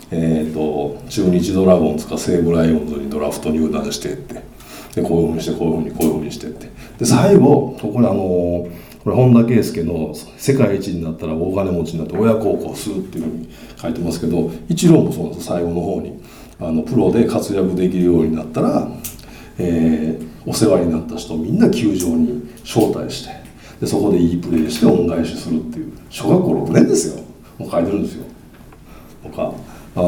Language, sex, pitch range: Japanese, male, 80-95 Hz